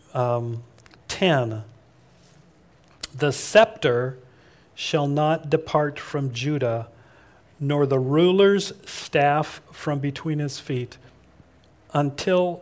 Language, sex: English, male